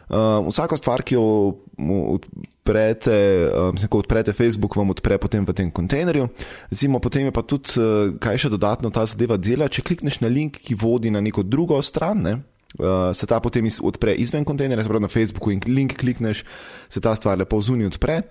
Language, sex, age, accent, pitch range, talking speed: English, male, 20-39, Croatian, 105-130 Hz, 195 wpm